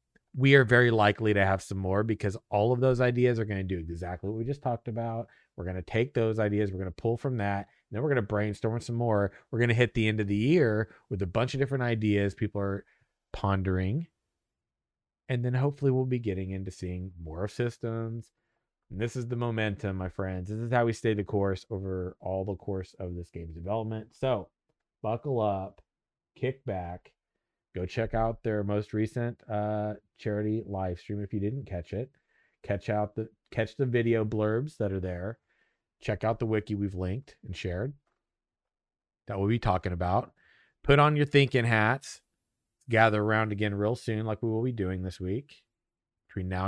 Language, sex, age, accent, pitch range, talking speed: English, male, 30-49, American, 95-120 Hz, 200 wpm